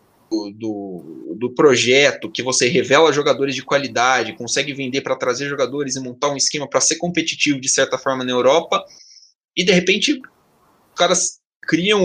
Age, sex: 20-39, male